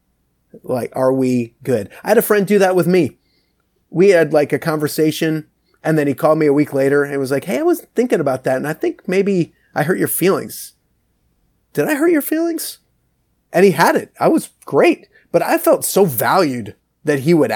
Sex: male